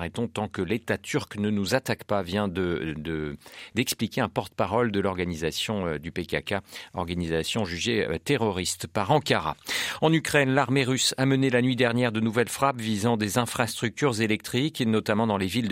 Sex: male